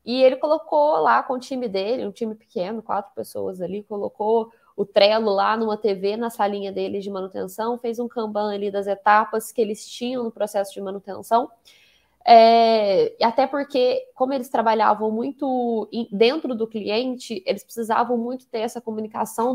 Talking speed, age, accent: 165 wpm, 20-39, Brazilian